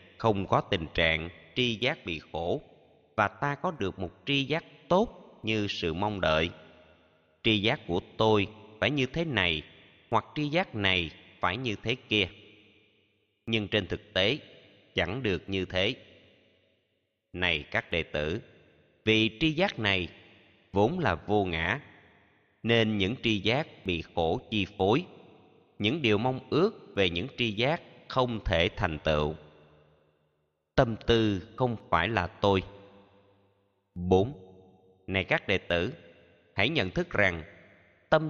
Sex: male